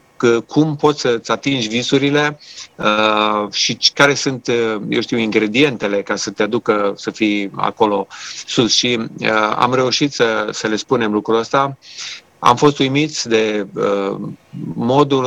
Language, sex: Romanian, male